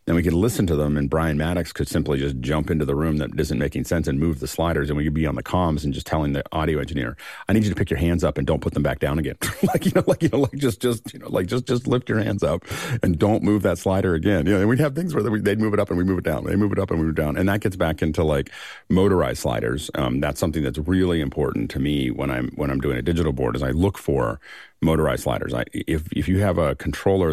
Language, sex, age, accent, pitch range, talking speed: English, male, 40-59, American, 70-95 Hz, 305 wpm